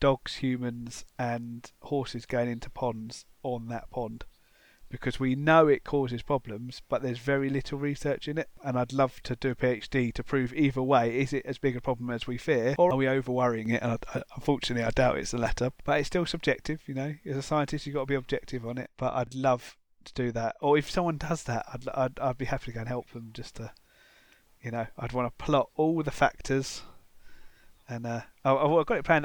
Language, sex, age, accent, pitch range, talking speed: English, male, 30-49, British, 120-135 Hz, 225 wpm